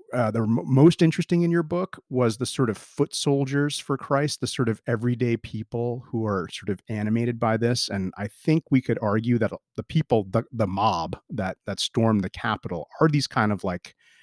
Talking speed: 205 wpm